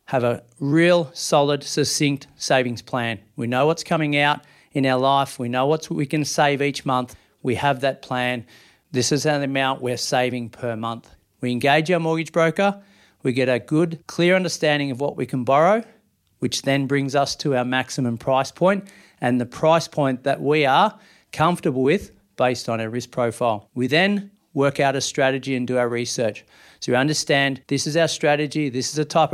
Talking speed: 195 wpm